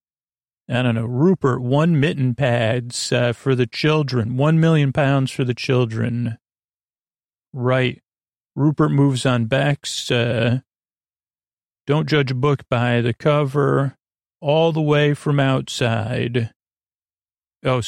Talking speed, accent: 125 wpm, American